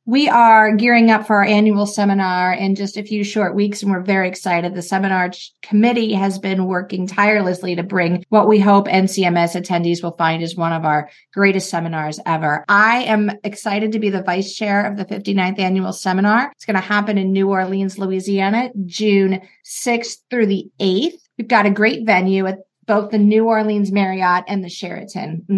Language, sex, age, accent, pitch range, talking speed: English, female, 40-59, American, 185-215 Hz, 190 wpm